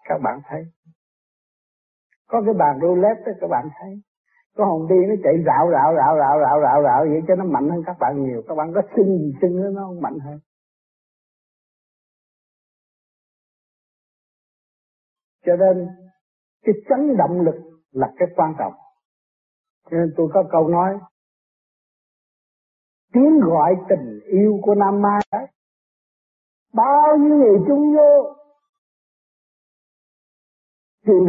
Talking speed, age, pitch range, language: 135 wpm, 60-79, 180-240 Hz, Vietnamese